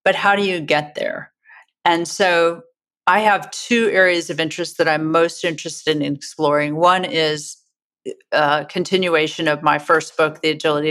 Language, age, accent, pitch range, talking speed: English, 40-59, American, 155-185 Hz, 165 wpm